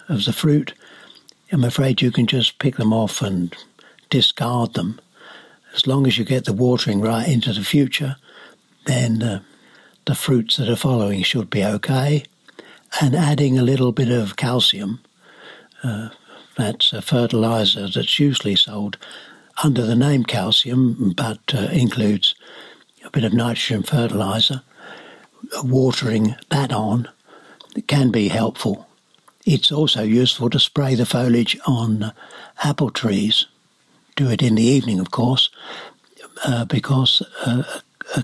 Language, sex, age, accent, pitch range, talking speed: English, male, 60-79, British, 110-135 Hz, 140 wpm